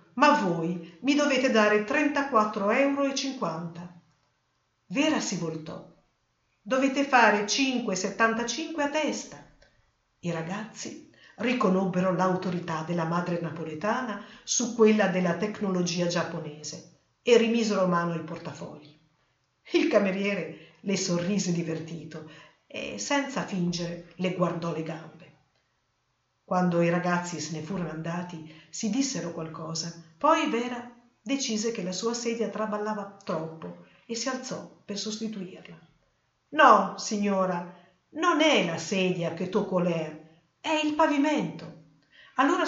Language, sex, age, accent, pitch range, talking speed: Italian, female, 50-69, native, 170-230 Hz, 115 wpm